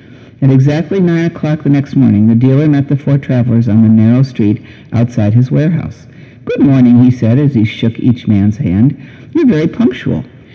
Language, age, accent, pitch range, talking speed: English, 60-79, American, 120-150 Hz, 190 wpm